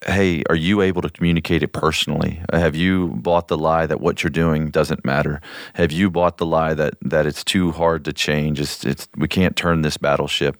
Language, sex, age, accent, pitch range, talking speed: English, male, 40-59, American, 80-100 Hz, 215 wpm